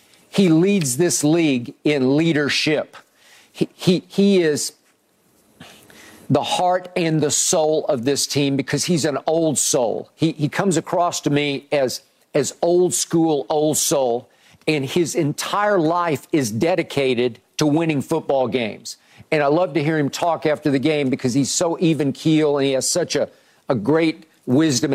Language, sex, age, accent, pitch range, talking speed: English, male, 50-69, American, 140-170 Hz, 165 wpm